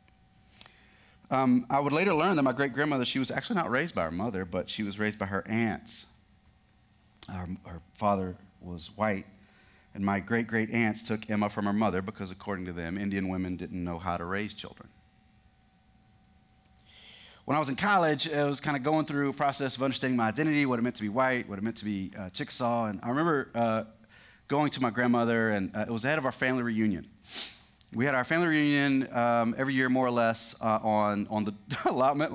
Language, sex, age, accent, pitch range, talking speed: English, male, 30-49, American, 105-145 Hz, 210 wpm